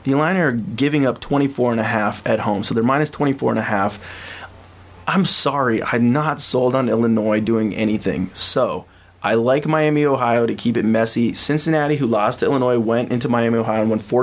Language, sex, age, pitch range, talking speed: English, male, 20-39, 110-135 Hz, 160 wpm